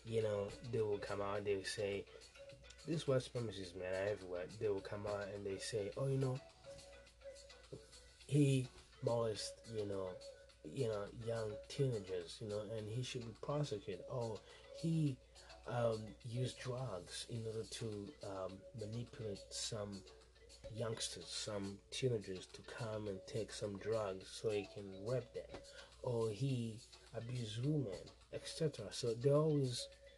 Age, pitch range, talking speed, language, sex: 20-39, 95-125 Hz, 145 wpm, English, male